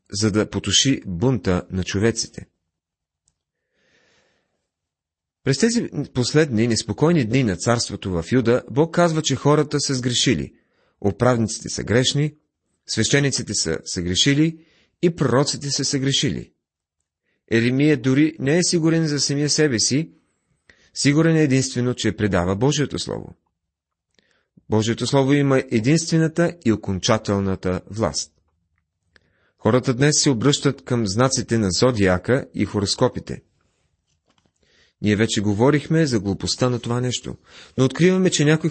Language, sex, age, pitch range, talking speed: Bulgarian, male, 40-59, 100-140 Hz, 120 wpm